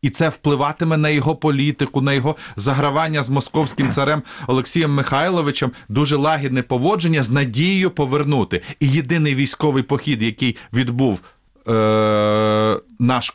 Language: Ukrainian